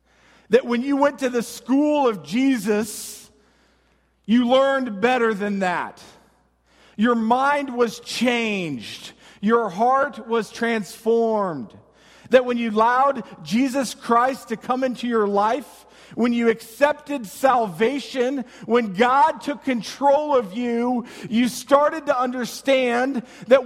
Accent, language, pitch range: American, English, 220-270 Hz